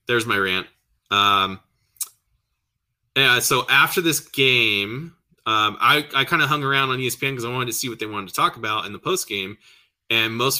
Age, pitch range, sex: 20-39, 100-125 Hz, male